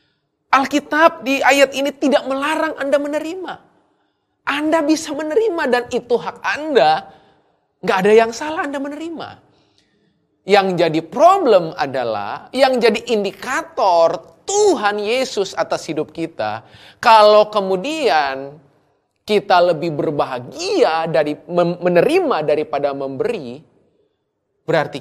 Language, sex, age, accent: Indonesian, male, 30-49, native